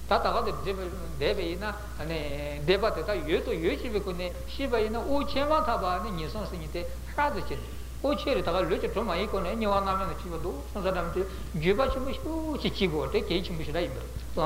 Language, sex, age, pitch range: Italian, male, 60-79, 155-230 Hz